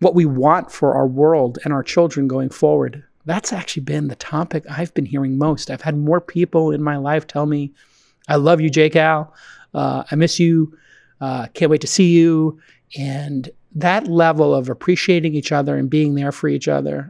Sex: male